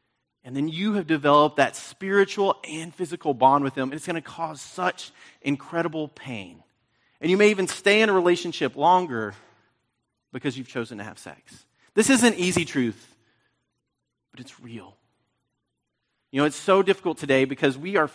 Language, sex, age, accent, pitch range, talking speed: English, male, 30-49, American, 125-170 Hz, 170 wpm